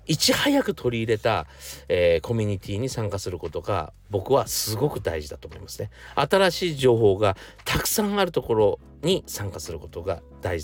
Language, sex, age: Japanese, male, 50-69